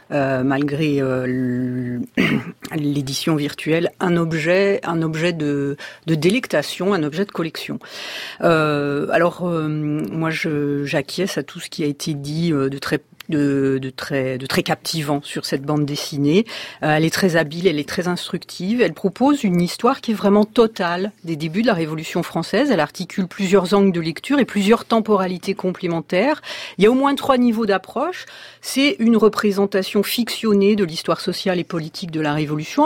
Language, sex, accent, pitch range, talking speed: French, female, French, 150-200 Hz, 170 wpm